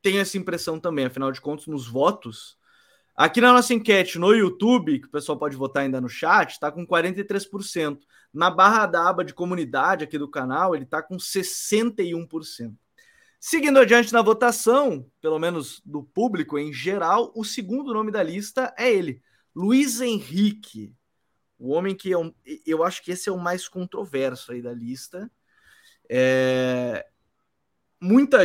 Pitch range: 150-215 Hz